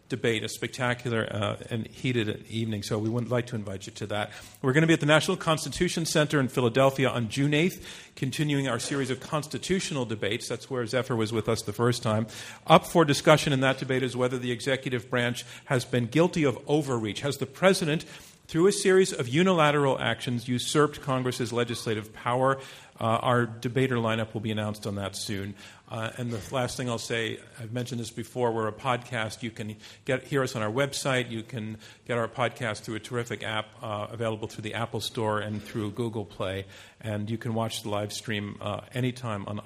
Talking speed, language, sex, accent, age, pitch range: 205 wpm, English, male, American, 50-69, 110-140 Hz